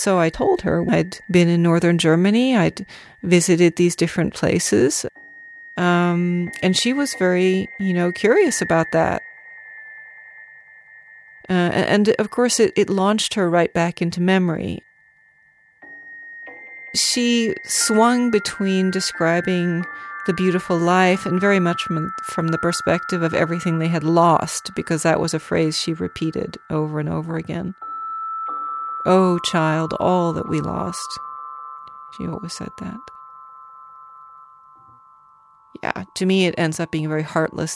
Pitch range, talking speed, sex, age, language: 155-195 Hz, 135 wpm, female, 40-59, English